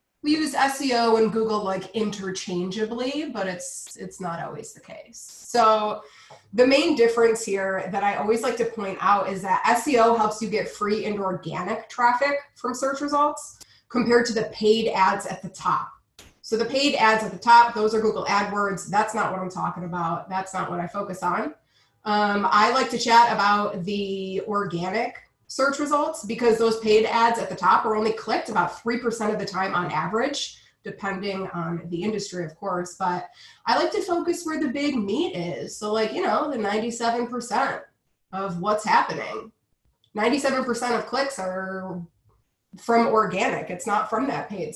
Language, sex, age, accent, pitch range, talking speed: English, female, 20-39, American, 195-245 Hz, 180 wpm